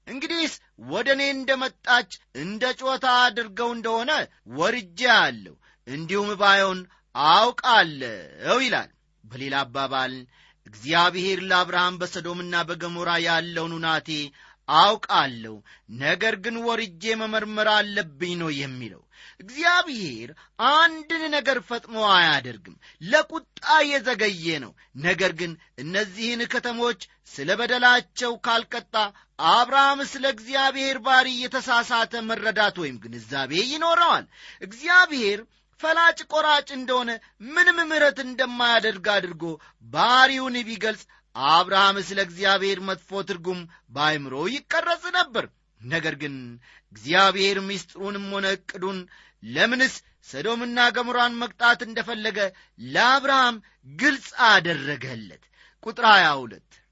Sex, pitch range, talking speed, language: male, 175-255 Hz, 85 wpm, Amharic